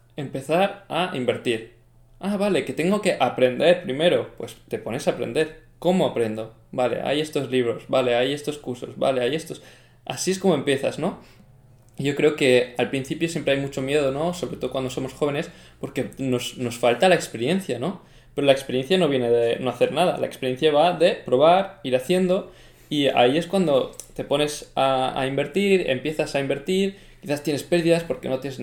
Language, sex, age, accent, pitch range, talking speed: Spanish, male, 20-39, Spanish, 125-155 Hz, 185 wpm